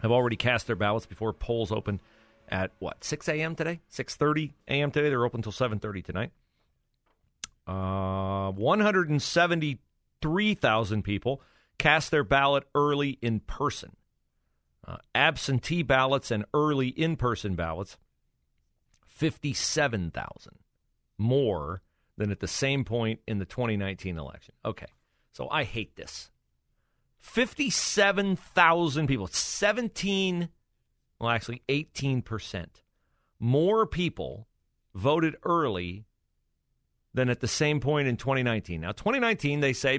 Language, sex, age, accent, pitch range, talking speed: English, male, 40-59, American, 95-145 Hz, 110 wpm